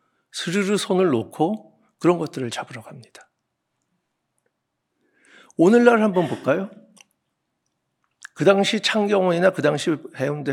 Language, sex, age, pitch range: Korean, male, 60-79, 120-180 Hz